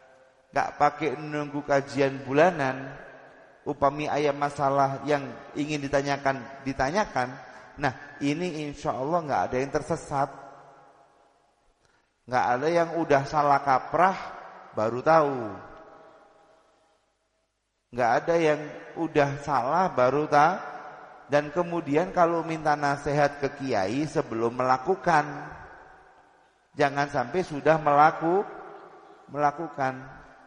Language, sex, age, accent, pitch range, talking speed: Indonesian, male, 30-49, native, 125-150 Hz, 95 wpm